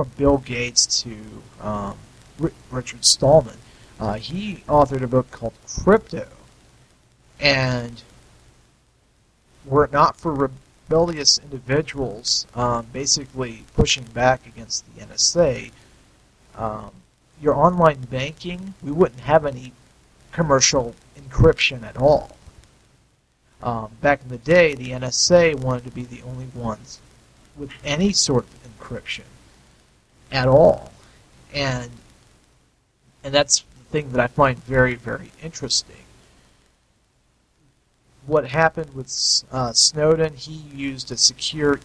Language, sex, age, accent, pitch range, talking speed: English, male, 40-59, American, 120-145 Hz, 115 wpm